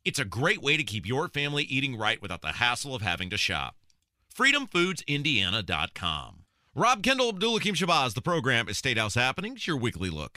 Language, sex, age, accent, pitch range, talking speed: English, male, 30-49, American, 95-150 Hz, 175 wpm